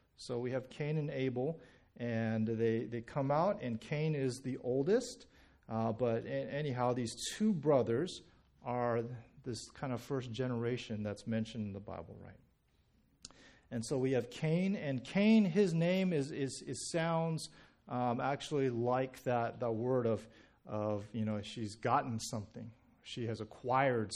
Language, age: English, 40-59